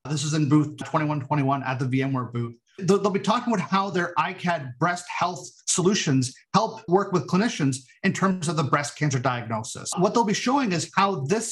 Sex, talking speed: male, 195 wpm